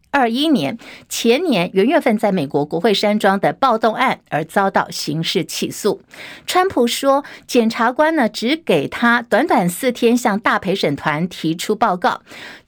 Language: Chinese